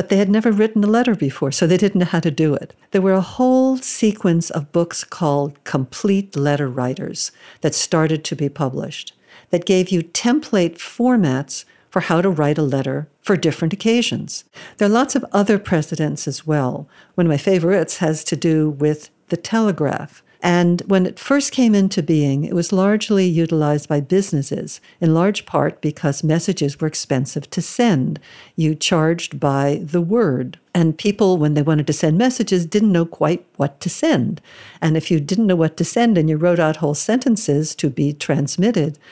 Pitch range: 150-195 Hz